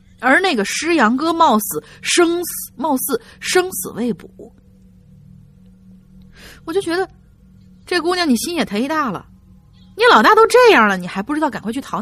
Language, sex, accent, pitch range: Chinese, female, native, 160-260 Hz